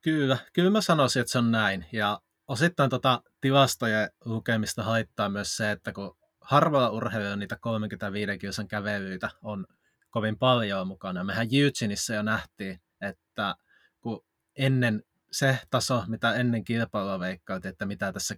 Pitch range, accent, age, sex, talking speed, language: 105-130 Hz, native, 20-39, male, 145 wpm, Finnish